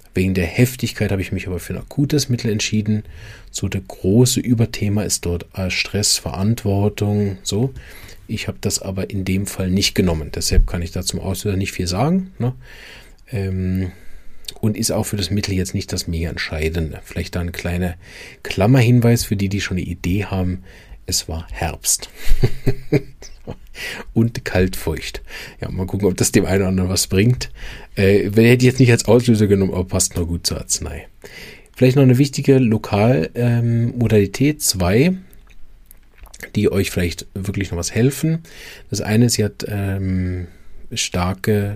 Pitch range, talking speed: 95-115 Hz, 160 wpm